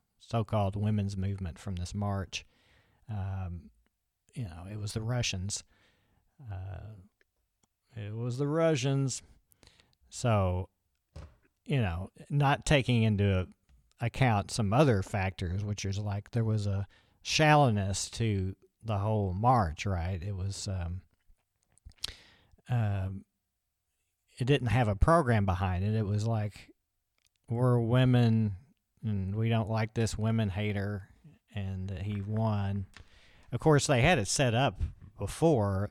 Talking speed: 125 wpm